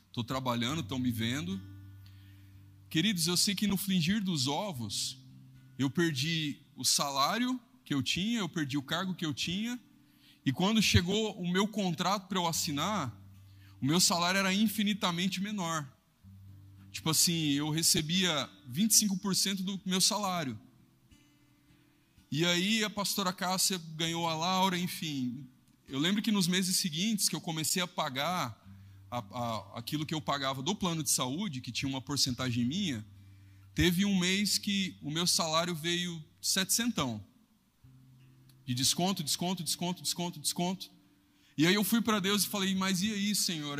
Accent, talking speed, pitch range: Brazilian, 150 wpm, 130-190 Hz